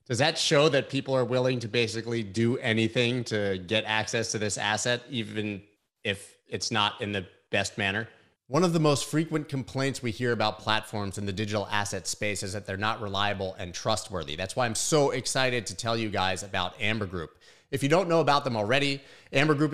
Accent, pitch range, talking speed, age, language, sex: American, 105-135 Hz, 205 wpm, 30-49, English, male